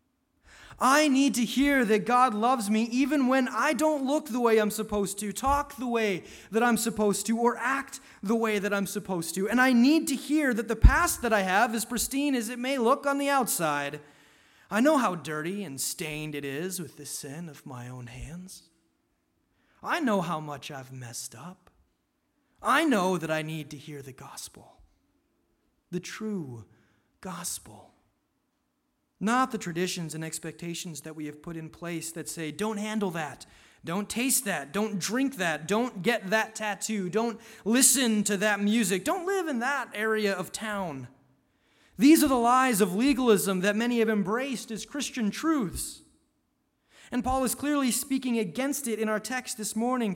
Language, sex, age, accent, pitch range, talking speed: English, male, 30-49, American, 185-255 Hz, 180 wpm